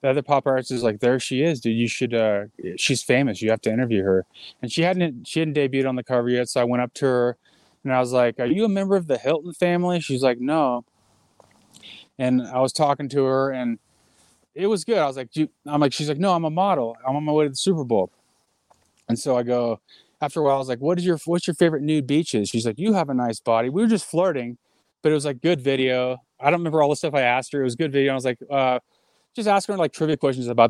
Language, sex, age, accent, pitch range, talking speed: English, male, 20-39, American, 120-155 Hz, 270 wpm